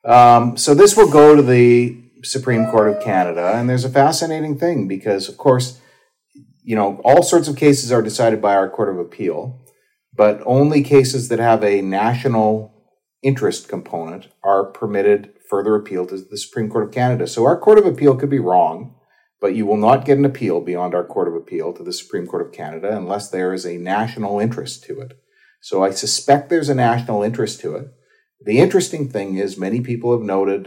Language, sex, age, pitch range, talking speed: English, male, 40-59, 105-145 Hz, 200 wpm